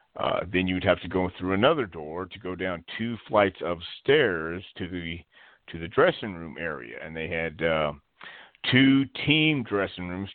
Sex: male